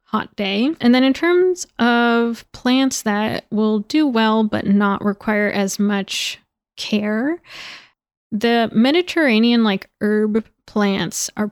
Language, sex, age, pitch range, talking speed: English, female, 20-39, 200-235 Hz, 125 wpm